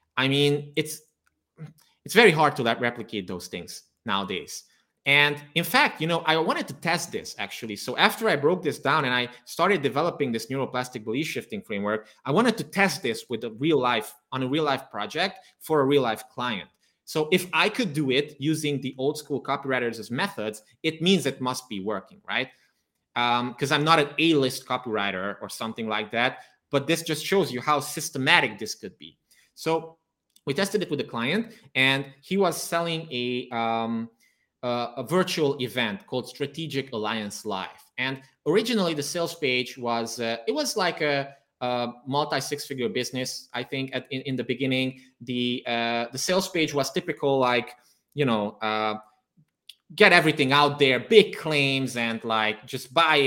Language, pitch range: English, 120-155 Hz